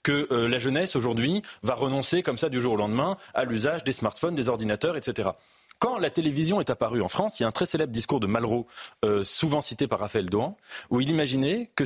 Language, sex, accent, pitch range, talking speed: French, male, French, 115-155 Hz, 225 wpm